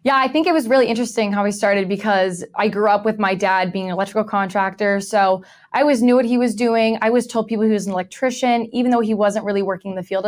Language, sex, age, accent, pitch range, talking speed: English, female, 20-39, American, 190-225 Hz, 270 wpm